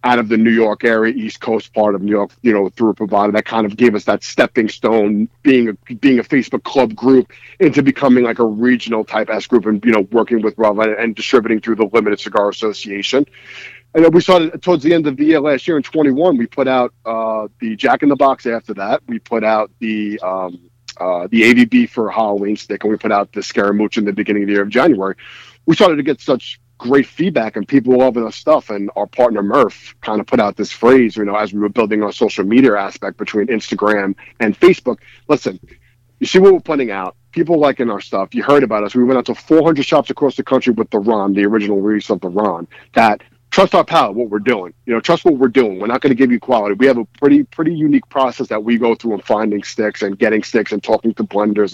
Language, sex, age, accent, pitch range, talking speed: English, male, 40-59, American, 105-130 Hz, 245 wpm